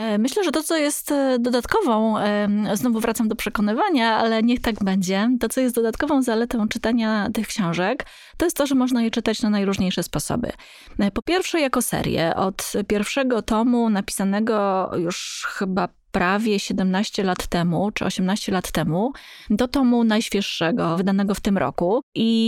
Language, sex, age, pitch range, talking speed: Polish, female, 20-39, 195-235 Hz, 155 wpm